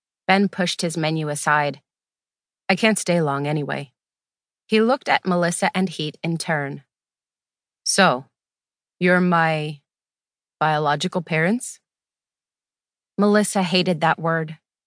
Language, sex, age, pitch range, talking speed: English, female, 30-49, 160-210 Hz, 110 wpm